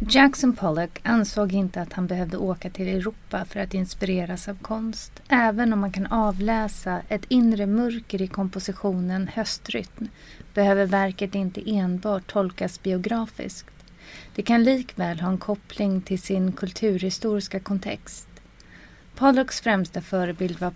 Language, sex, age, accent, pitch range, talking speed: Swedish, female, 30-49, native, 185-215 Hz, 135 wpm